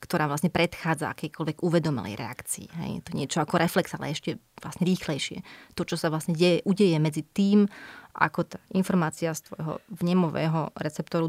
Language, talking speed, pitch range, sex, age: Slovak, 160 wpm, 160-180 Hz, female, 30-49